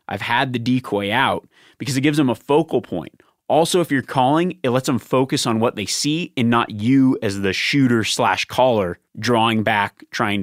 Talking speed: 195 wpm